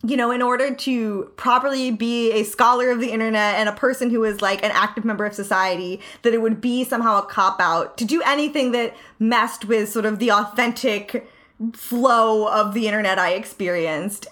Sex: female